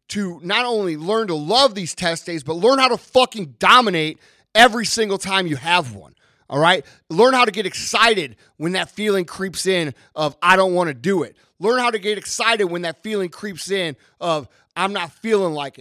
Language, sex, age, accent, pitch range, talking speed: English, male, 30-49, American, 165-215 Hz, 210 wpm